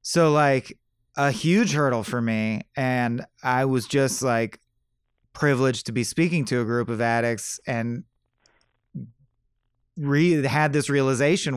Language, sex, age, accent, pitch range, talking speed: English, male, 30-49, American, 120-150 Hz, 130 wpm